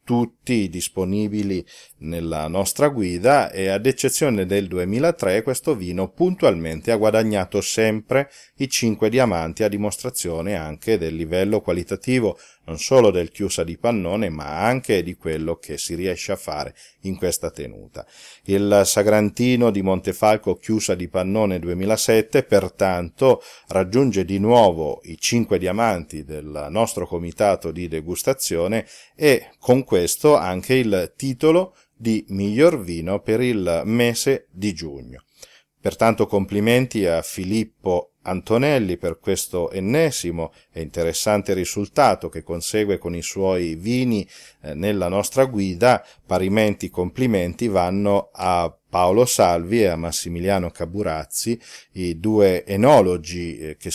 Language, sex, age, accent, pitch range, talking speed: Italian, male, 40-59, native, 90-115 Hz, 125 wpm